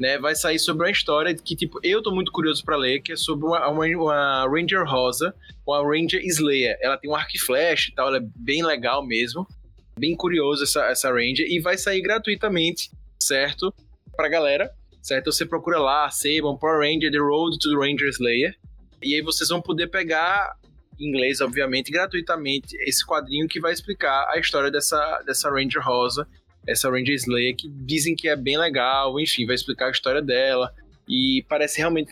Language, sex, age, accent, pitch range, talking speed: Portuguese, male, 20-39, Brazilian, 140-170 Hz, 190 wpm